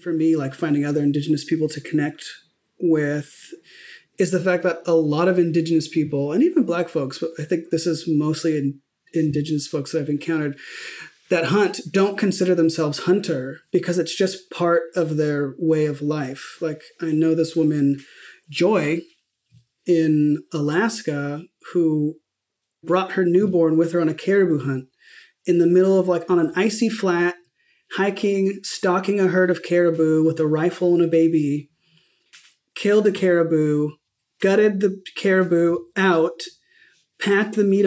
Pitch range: 155-185 Hz